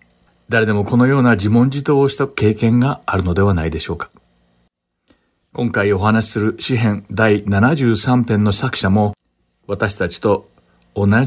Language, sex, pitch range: Japanese, male, 90-120 Hz